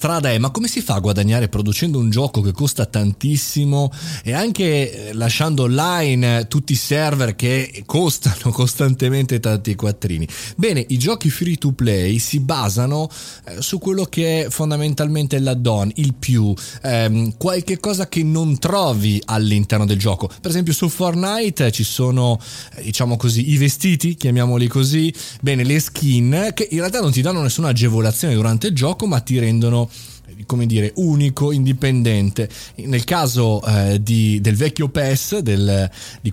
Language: Italian